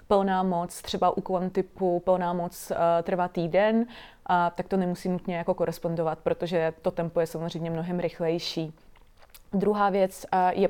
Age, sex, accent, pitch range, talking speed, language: 20-39, female, native, 175-205 Hz, 145 wpm, Czech